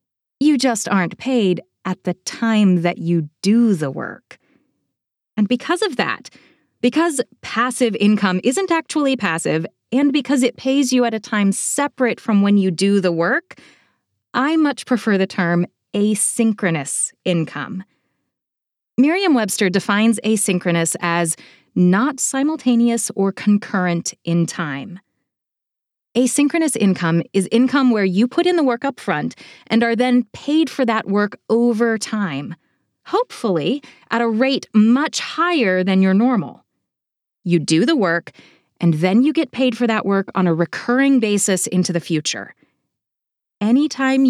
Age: 20-39